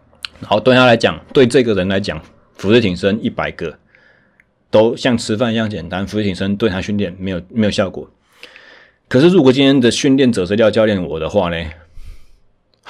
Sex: male